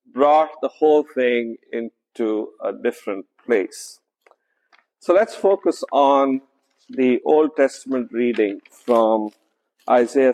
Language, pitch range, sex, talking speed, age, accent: English, 120-195 Hz, male, 105 wpm, 50-69, Indian